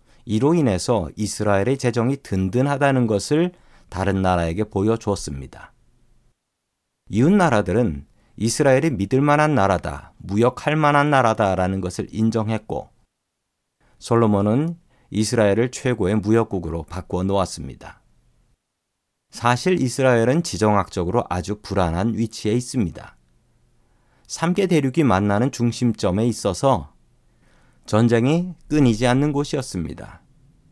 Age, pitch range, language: 40-59, 100-140 Hz, Korean